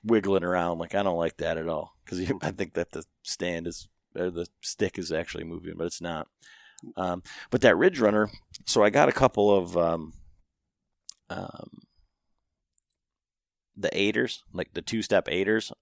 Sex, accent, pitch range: male, American, 85-100 Hz